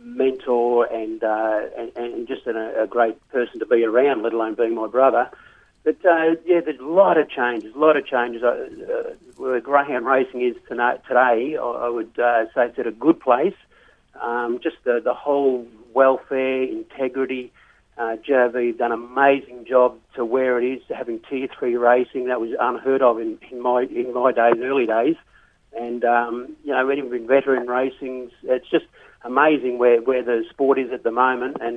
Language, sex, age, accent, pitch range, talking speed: English, male, 50-69, Australian, 120-145 Hz, 190 wpm